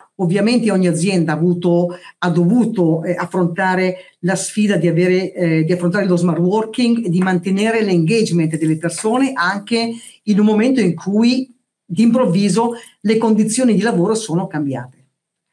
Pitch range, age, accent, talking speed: 170-210 Hz, 50-69, native, 145 wpm